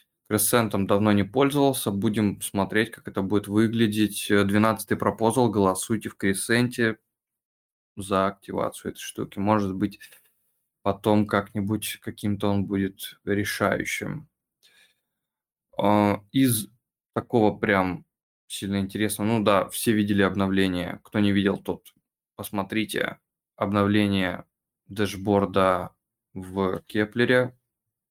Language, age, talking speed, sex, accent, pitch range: Russian, 20-39, 100 wpm, male, native, 100-110 Hz